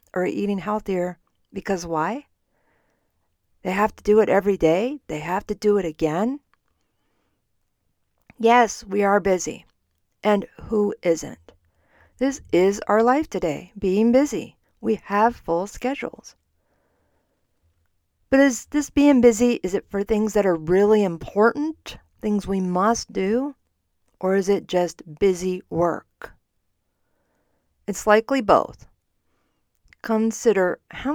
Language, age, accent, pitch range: English, 50-69, American, 155-220 Hz